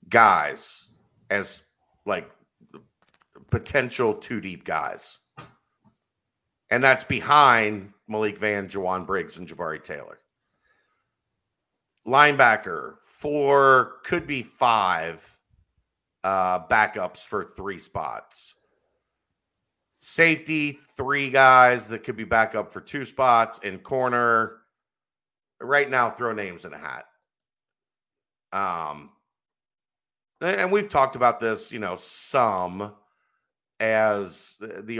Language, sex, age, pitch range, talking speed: English, male, 50-69, 100-140 Hz, 100 wpm